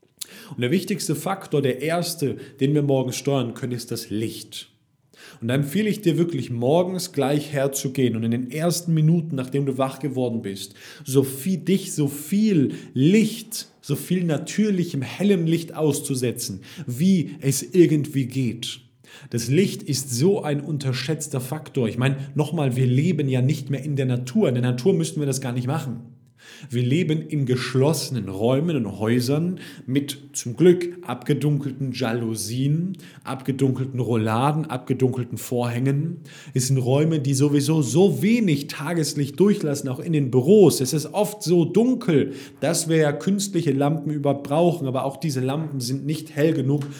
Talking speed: 160 wpm